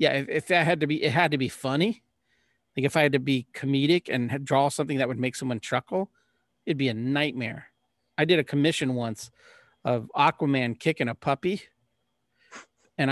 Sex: male